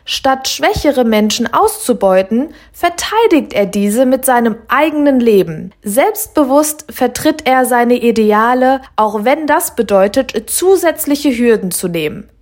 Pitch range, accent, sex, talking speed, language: 210-285 Hz, German, female, 115 wpm, German